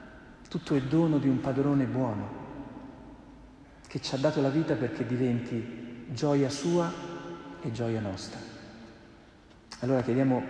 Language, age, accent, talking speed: Italian, 40-59, native, 125 wpm